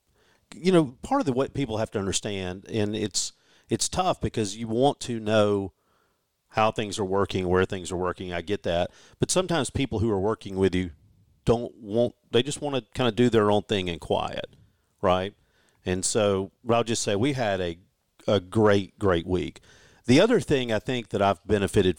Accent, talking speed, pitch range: American, 200 wpm, 95-130 Hz